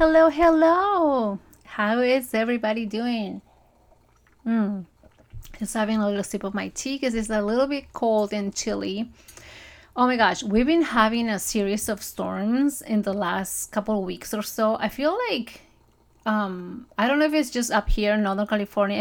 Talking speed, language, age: 170 wpm, English, 30-49